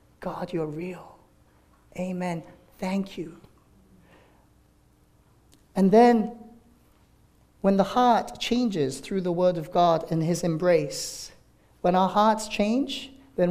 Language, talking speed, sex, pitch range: English, 110 wpm, male, 140-190 Hz